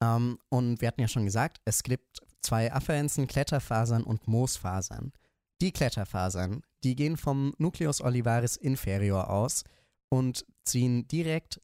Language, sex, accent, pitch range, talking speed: German, male, German, 110-135 Hz, 135 wpm